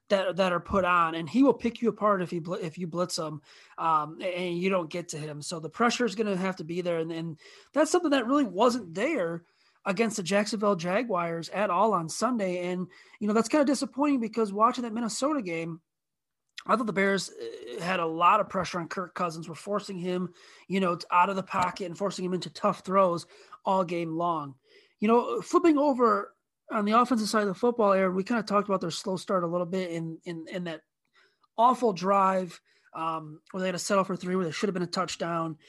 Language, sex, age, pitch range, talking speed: English, male, 30-49, 175-225 Hz, 230 wpm